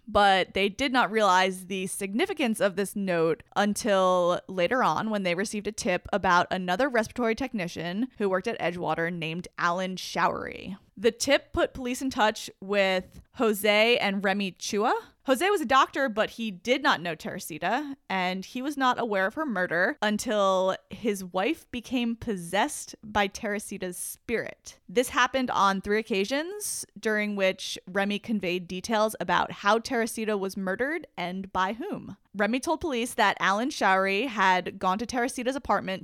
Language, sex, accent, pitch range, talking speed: English, female, American, 190-240 Hz, 160 wpm